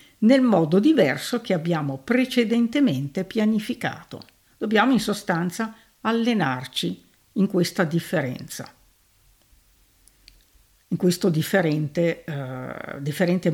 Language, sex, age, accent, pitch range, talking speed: Italian, female, 50-69, native, 150-215 Hz, 75 wpm